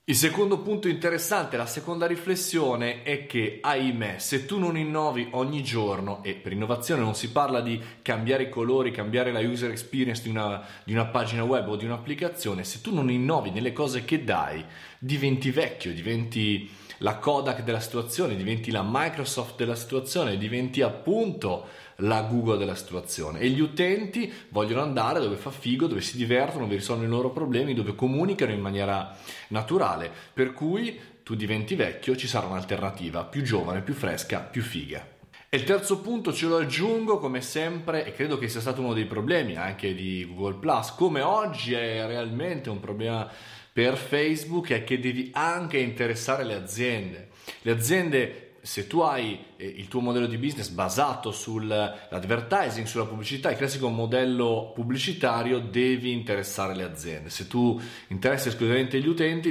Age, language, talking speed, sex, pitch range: 30-49, Italian, 165 wpm, male, 110-140 Hz